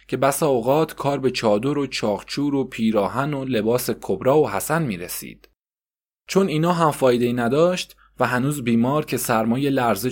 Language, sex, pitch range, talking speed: Persian, male, 115-150 Hz, 165 wpm